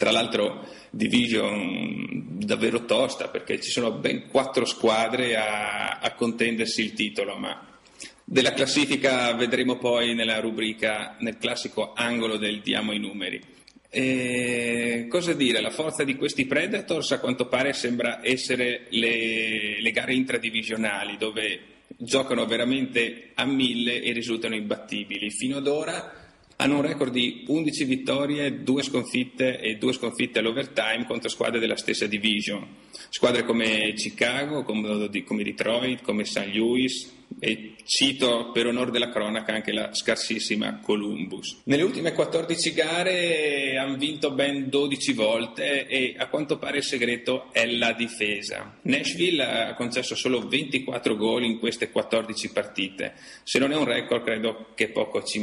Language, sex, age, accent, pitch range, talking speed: Italian, male, 40-59, native, 110-135 Hz, 140 wpm